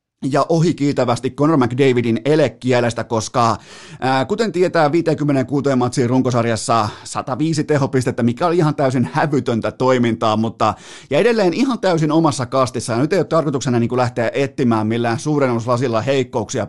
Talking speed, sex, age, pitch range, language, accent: 135 wpm, male, 30-49, 115-145 Hz, Finnish, native